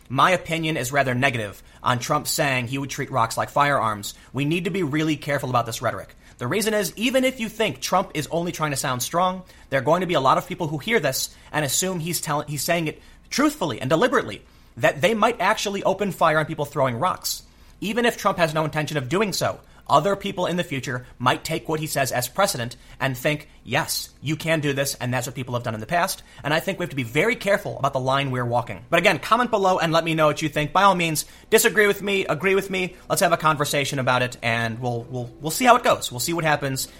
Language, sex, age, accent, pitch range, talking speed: English, male, 30-49, American, 125-175 Hz, 255 wpm